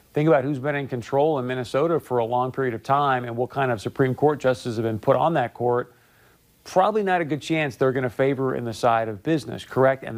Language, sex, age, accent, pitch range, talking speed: English, male, 40-59, American, 125-150 Hz, 255 wpm